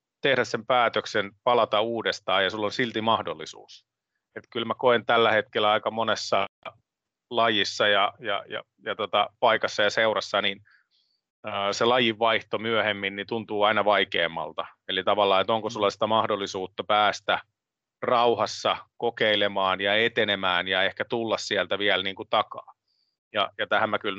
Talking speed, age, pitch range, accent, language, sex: 155 wpm, 30-49, 100-115 Hz, native, Finnish, male